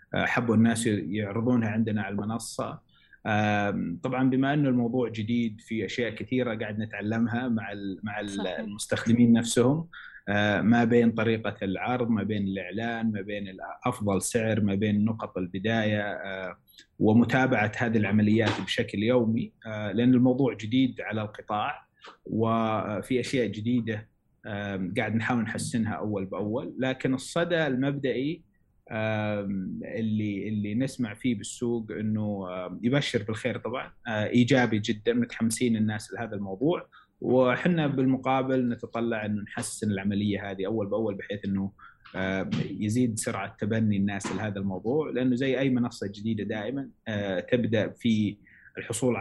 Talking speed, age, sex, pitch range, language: 120 wpm, 20-39, male, 105-125 Hz, Arabic